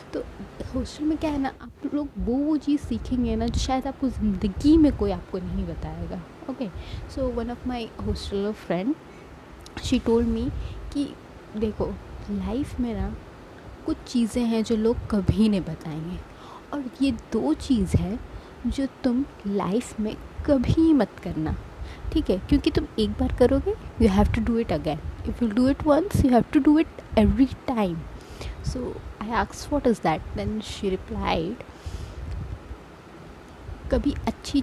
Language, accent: Hindi, native